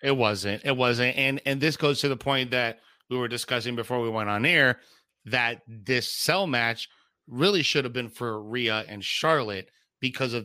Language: English